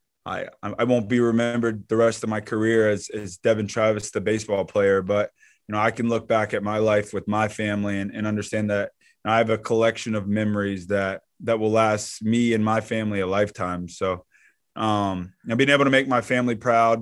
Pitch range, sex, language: 105-115 Hz, male, English